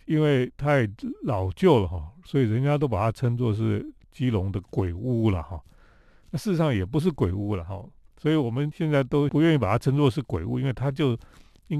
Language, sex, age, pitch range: Chinese, male, 40-59, 110-160 Hz